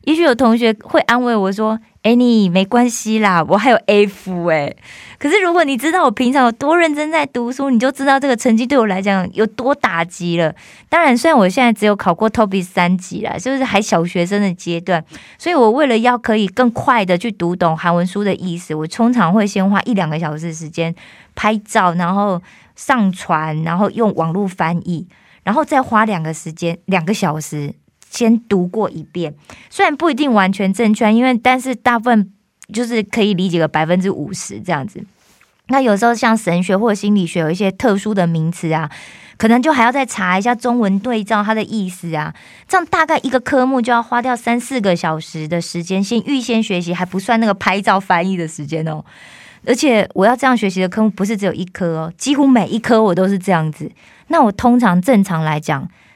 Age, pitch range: 20-39, 180-245 Hz